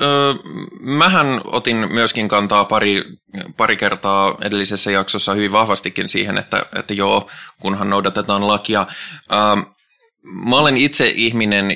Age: 20-39